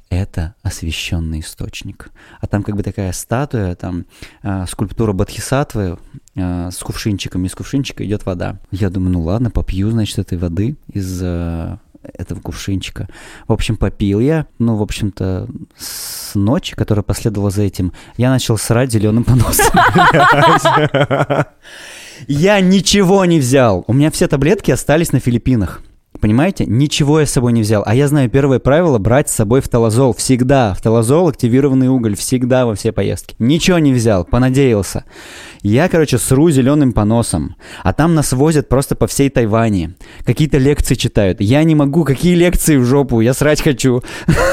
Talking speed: 155 wpm